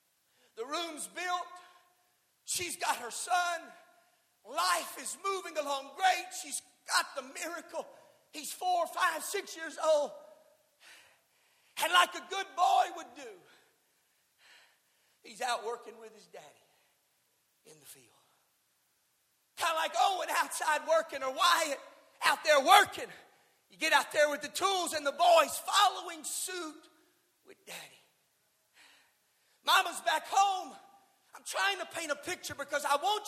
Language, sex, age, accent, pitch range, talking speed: English, male, 50-69, American, 285-360 Hz, 135 wpm